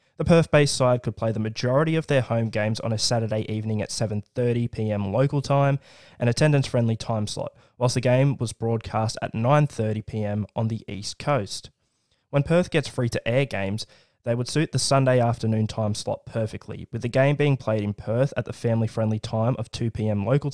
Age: 20-39